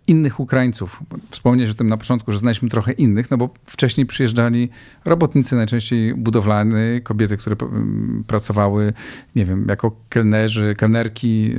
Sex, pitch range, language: male, 110-130 Hz, Polish